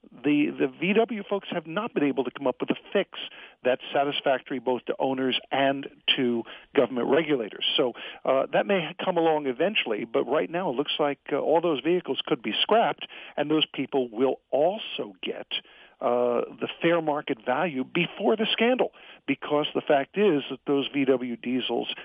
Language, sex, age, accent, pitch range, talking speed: English, male, 50-69, American, 130-175 Hz, 175 wpm